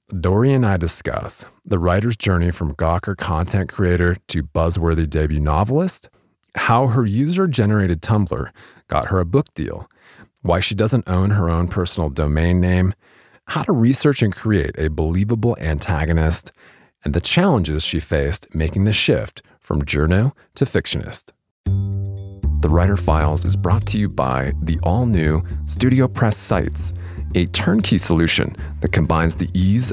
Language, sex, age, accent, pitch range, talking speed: English, male, 40-59, American, 80-105 Hz, 145 wpm